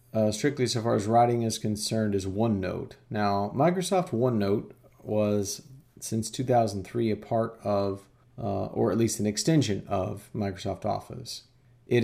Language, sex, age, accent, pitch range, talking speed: English, male, 40-59, American, 100-120 Hz, 145 wpm